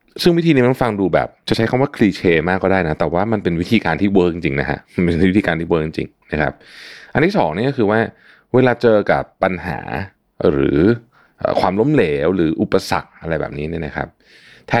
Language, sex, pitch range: Thai, male, 85-115 Hz